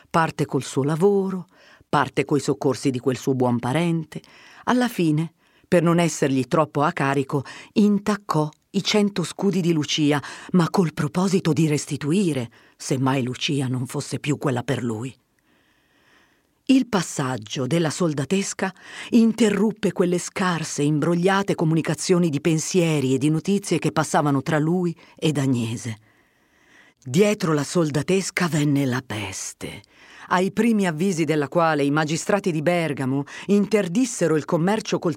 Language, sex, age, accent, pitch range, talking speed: Italian, female, 40-59, native, 140-195 Hz, 135 wpm